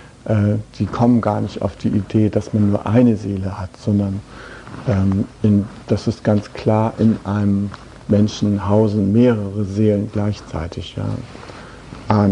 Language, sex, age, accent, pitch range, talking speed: German, male, 60-79, German, 100-120 Hz, 135 wpm